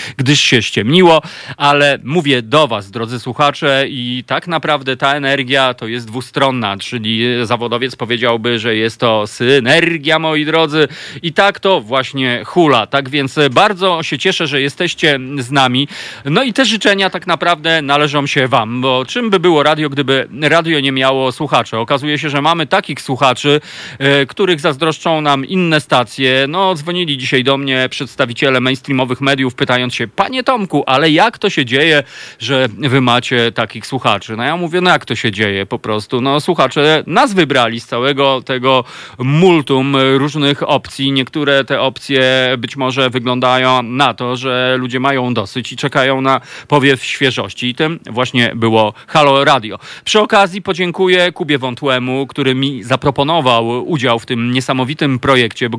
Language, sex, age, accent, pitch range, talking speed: Polish, male, 40-59, native, 125-155 Hz, 160 wpm